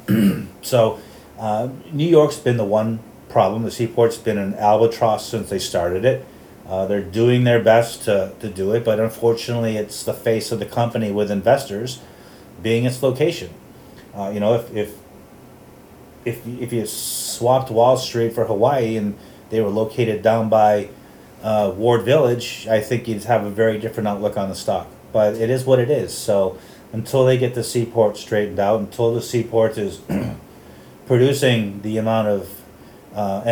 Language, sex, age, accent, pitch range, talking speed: English, male, 30-49, American, 105-120 Hz, 170 wpm